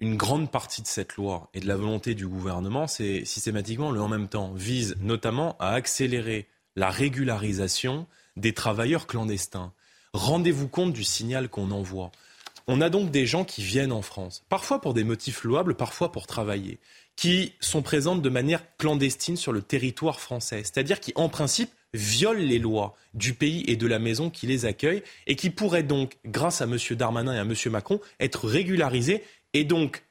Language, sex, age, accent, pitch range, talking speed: French, male, 20-39, French, 110-150 Hz, 180 wpm